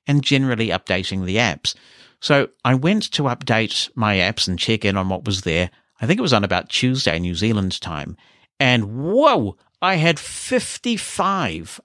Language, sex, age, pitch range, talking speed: English, male, 50-69, 95-130 Hz, 170 wpm